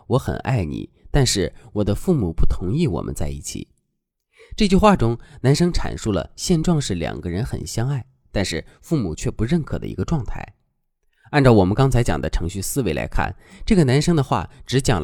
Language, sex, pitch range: Chinese, male, 95-145 Hz